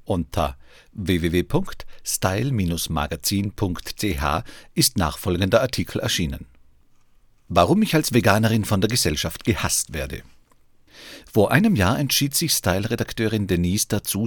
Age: 50-69